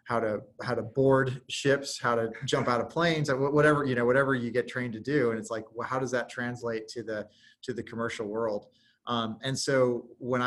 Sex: male